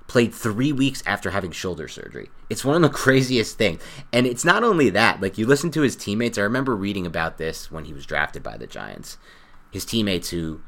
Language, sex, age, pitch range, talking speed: English, male, 30-49, 80-105 Hz, 220 wpm